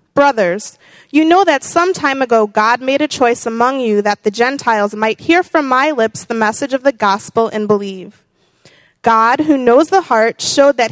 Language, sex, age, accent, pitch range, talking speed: English, female, 20-39, American, 215-290 Hz, 190 wpm